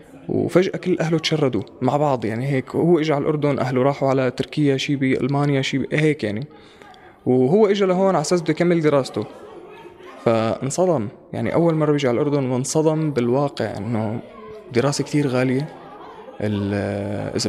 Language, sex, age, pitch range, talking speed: Arabic, male, 20-39, 125-150 Hz, 150 wpm